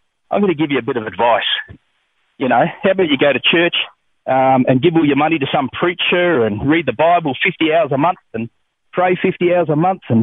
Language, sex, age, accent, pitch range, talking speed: English, male, 40-59, Australian, 130-170 Hz, 240 wpm